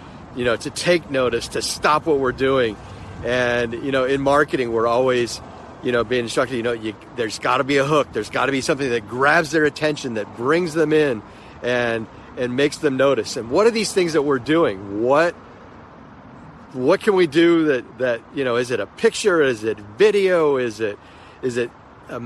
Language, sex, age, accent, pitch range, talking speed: English, male, 40-59, American, 115-155 Hz, 200 wpm